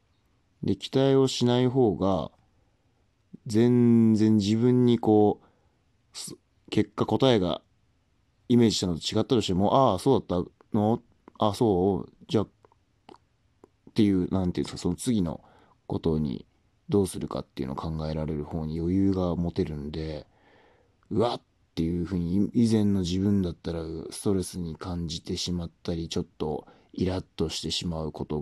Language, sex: Japanese, male